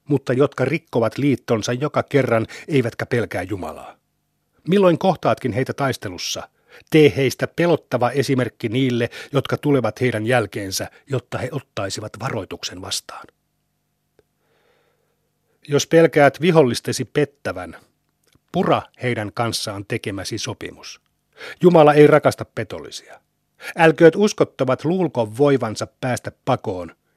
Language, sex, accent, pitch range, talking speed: Finnish, male, native, 115-145 Hz, 100 wpm